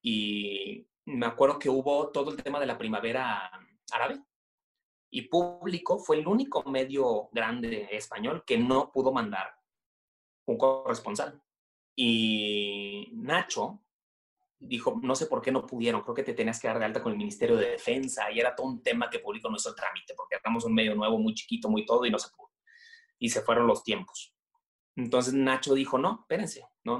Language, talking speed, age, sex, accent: Spanish, 185 wpm, 30-49, male, Mexican